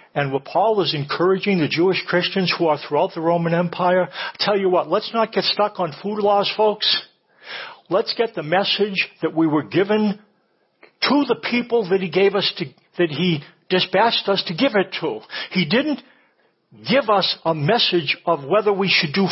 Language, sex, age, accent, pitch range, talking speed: English, male, 60-79, American, 170-215 Hz, 185 wpm